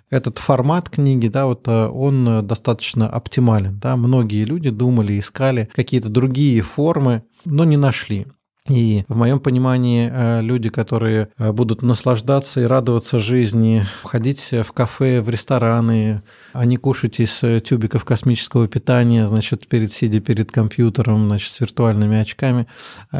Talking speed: 130 wpm